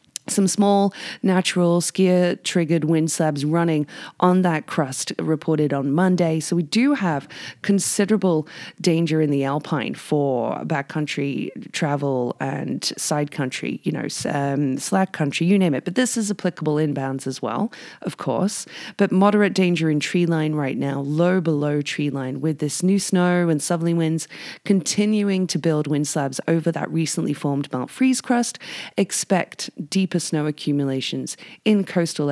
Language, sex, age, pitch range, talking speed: English, female, 30-49, 140-180 Hz, 150 wpm